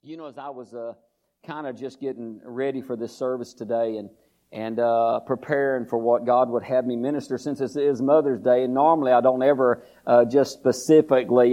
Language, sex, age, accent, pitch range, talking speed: English, male, 50-69, American, 115-130 Hz, 205 wpm